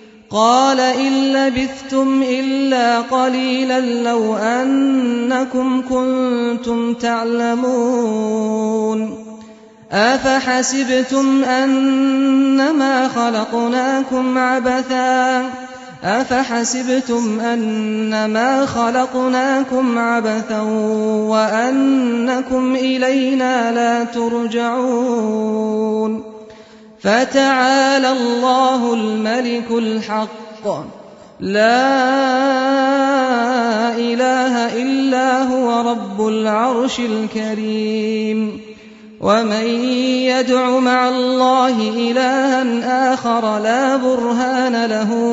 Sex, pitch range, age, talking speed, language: male, 220-255 Hz, 30-49, 55 wpm, Persian